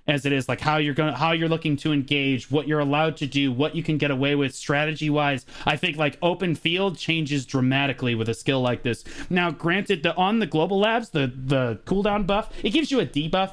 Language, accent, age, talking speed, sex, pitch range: English, American, 30-49, 230 wpm, male, 140-180 Hz